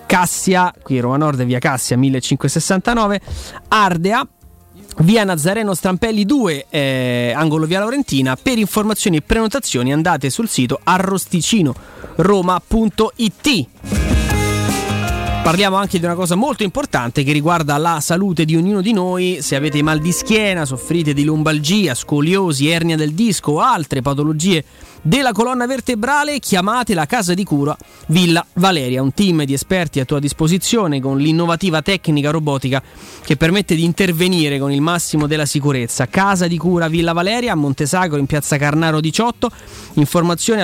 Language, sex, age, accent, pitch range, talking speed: Italian, male, 30-49, native, 145-200 Hz, 145 wpm